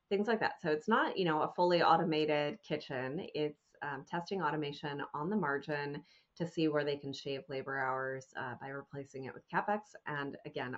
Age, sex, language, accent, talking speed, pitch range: 30-49, female, English, American, 195 wpm, 140-175 Hz